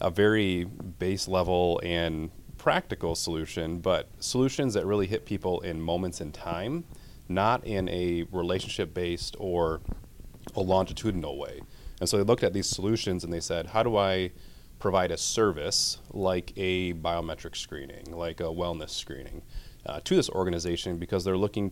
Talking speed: 155 wpm